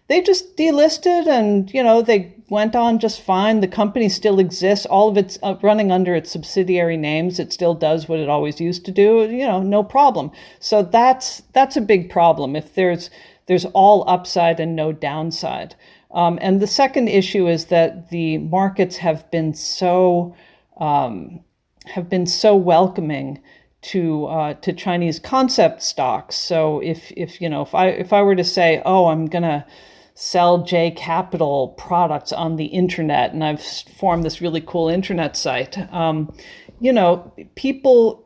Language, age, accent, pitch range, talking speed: English, 50-69, American, 160-205 Hz, 170 wpm